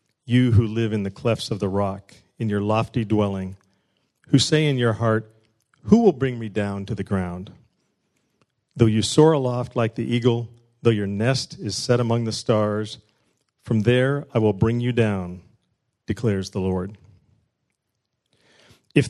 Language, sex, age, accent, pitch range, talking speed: English, male, 40-59, American, 110-130 Hz, 165 wpm